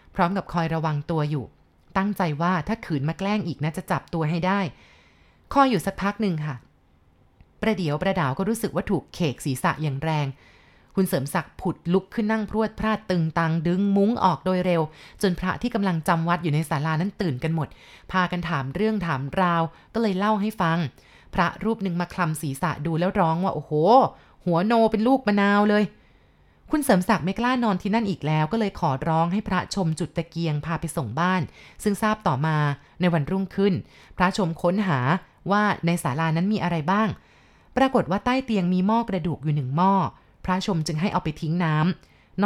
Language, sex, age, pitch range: Thai, female, 20-39, 160-200 Hz